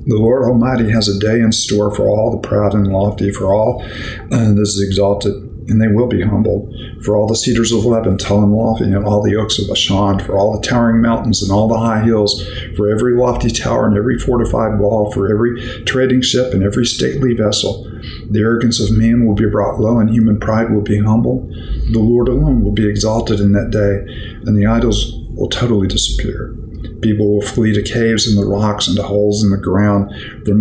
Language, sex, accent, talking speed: English, male, American, 215 wpm